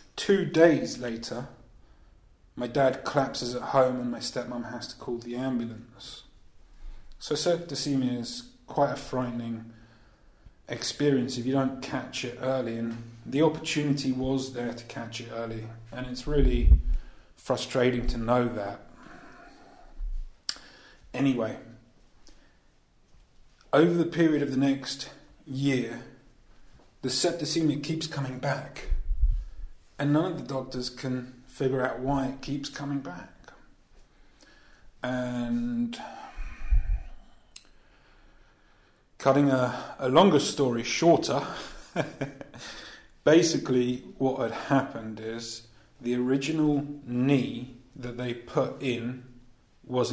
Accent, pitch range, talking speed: British, 120-135 Hz, 110 wpm